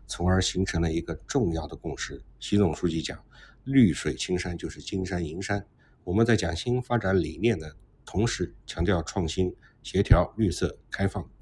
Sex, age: male, 50-69